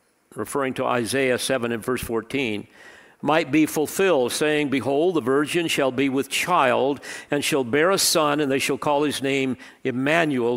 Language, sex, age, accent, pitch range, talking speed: English, male, 50-69, American, 125-165 Hz, 170 wpm